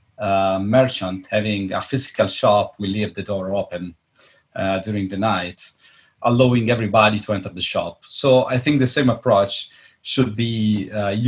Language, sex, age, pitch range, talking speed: English, male, 30-49, 100-125 Hz, 160 wpm